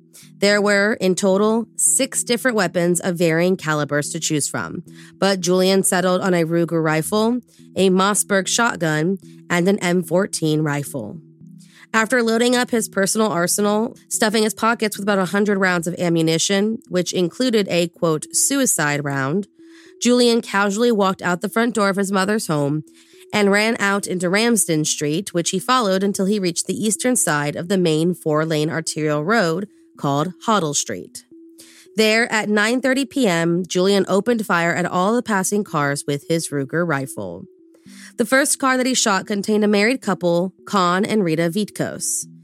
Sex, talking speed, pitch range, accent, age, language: female, 160 wpm, 165-215 Hz, American, 30-49, English